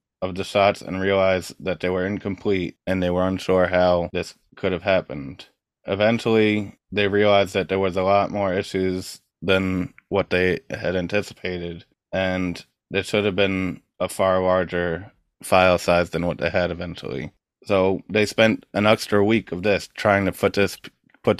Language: English